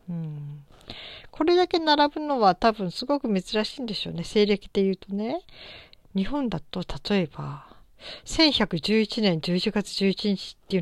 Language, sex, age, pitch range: Japanese, female, 50-69, 165-225 Hz